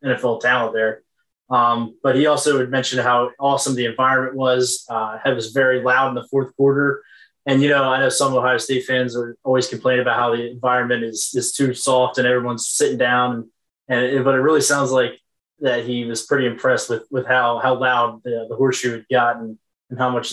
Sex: male